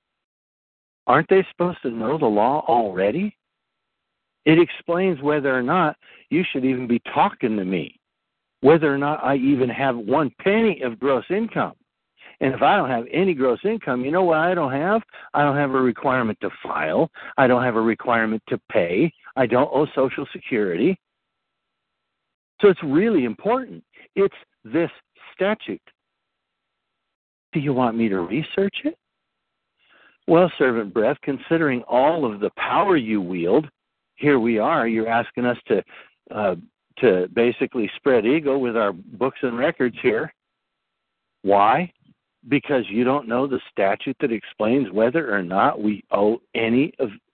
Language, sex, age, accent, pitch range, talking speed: English, male, 60-79, American, 120-165 Hz, 155 wpm